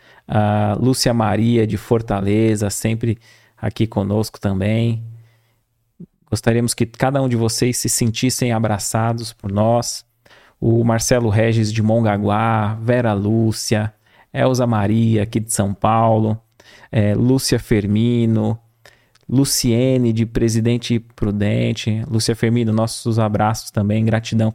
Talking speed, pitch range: 110 wpm, 110-125 Hz